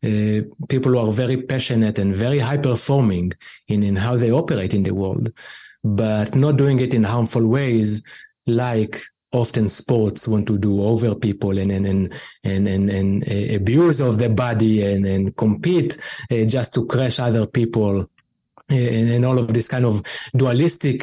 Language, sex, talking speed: English, male, 170 wpm